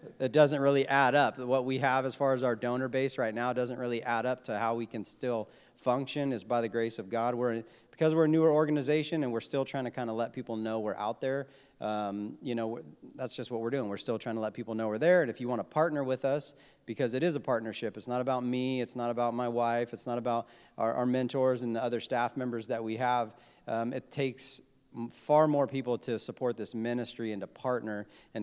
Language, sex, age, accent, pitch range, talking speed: English, male, 40-59, American, 110-130 Hz, 255 wpm